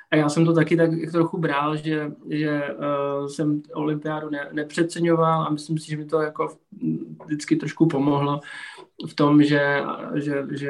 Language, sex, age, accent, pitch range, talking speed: Czech, male, 20-39, native, 150-165 Hz, 170 wpm